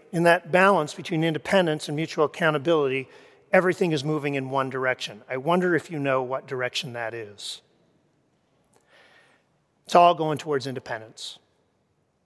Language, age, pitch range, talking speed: English, 40-59, 145-190 Hz, 135 wpm